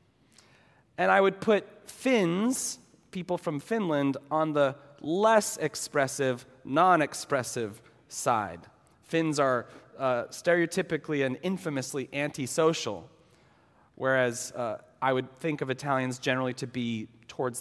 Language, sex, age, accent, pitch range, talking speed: English, male, 30-49, American, 145-215 Hz, 110 wpm